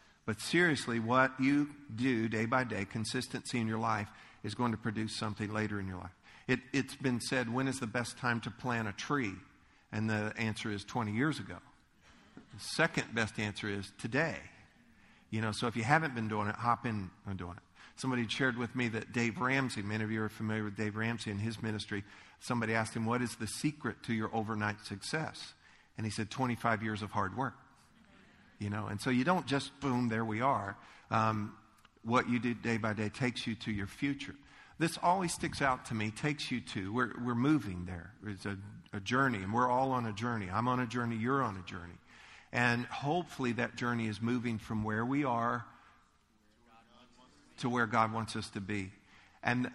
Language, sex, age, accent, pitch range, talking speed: English, male, 50-69, American, 105-125 Hz, 205 wpm